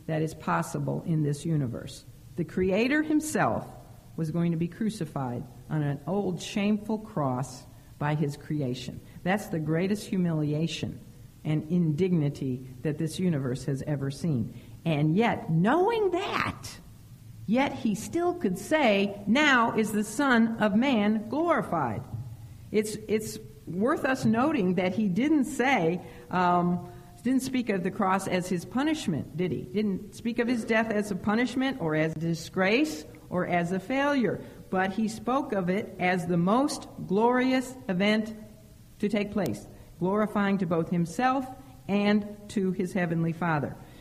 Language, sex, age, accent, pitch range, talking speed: English, female, 50-69, American, 150-220 Hz, 145 wpm